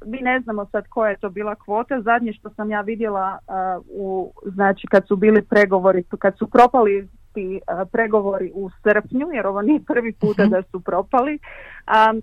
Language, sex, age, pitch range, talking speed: Croatian, female, 30-49, 190-220 Hz, 185 wpm